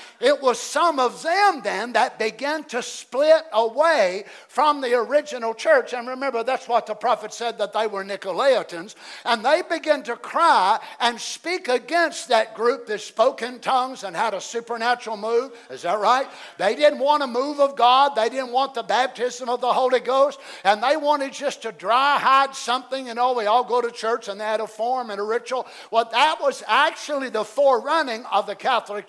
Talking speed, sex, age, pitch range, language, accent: 200 wpm, male, 50-69, 225-285 Hz, English, American